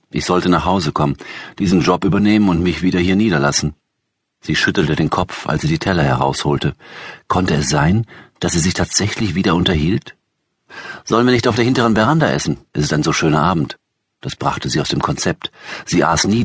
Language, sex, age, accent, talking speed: German, male, 50-69, German, 195 wpm